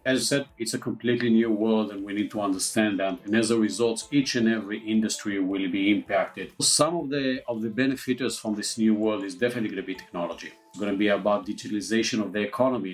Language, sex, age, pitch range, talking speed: English, male, 40-59, 100-115 Hz, 230 wpm